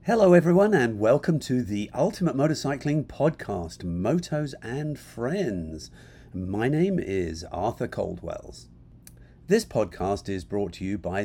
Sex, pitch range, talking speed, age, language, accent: male, 90-125 Hz, 130 wpm, 50-69, English, British